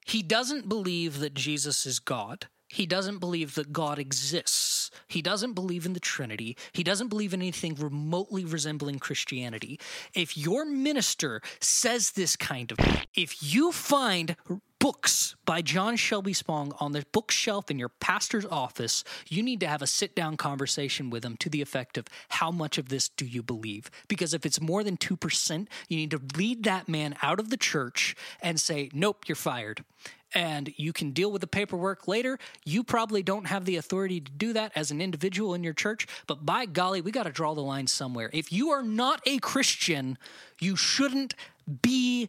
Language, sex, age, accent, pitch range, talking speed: English, male, 20-39, American, 150-225 Hz, 185 wpm